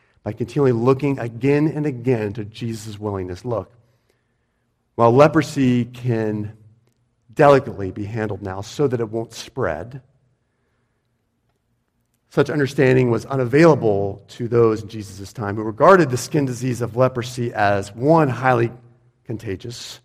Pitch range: 115-140 Hz